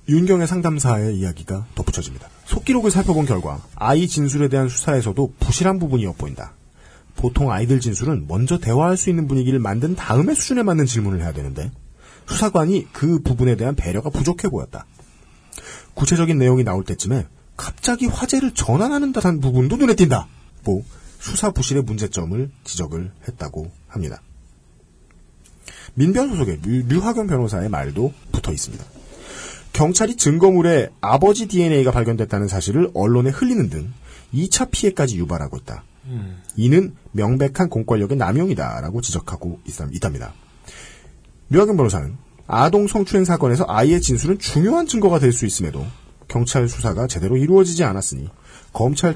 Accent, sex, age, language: native, male, 40-59, Korean